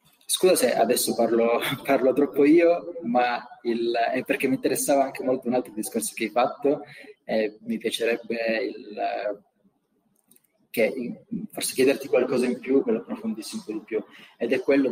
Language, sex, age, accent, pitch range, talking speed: Italian, male, 20-39, native, 110-140 Hz, 175 wpm